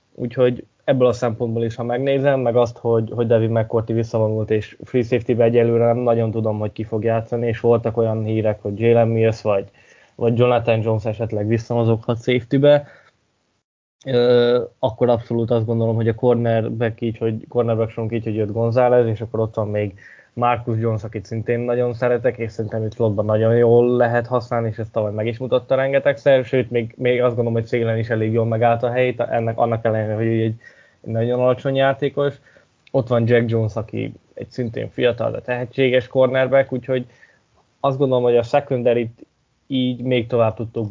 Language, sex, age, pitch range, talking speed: Hungarian, male, 10-29, 115-125 Hz, 180 wpm